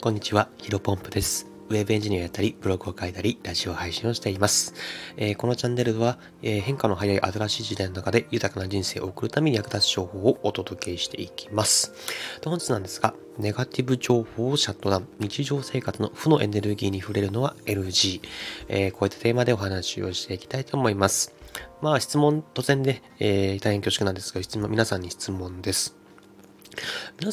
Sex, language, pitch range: male, Japanese, 95-120 Hz